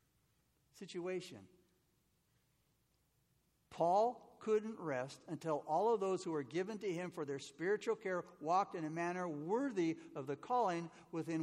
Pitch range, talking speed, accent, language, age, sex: 155-205 Hz, 135 wpm, American, English, 60-79, male